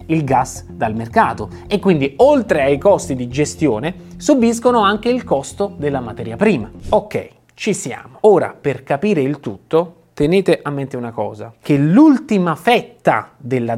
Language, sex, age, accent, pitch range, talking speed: Italian, male, 30-49, native, 135-210 Hz, 150 wpm